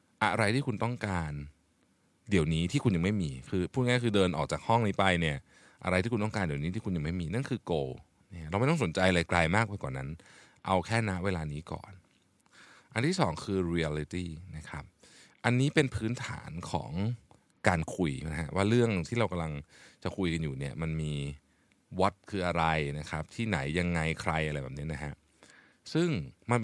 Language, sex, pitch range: Thai, male, 80-110 Hz